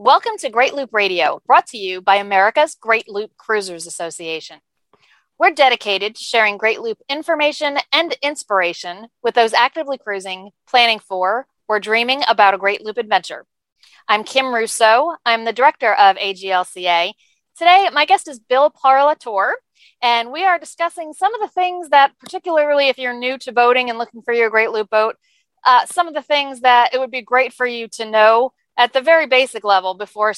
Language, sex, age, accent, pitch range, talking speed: English, female, 40-59, American, 200-265 Hz, 180 wpm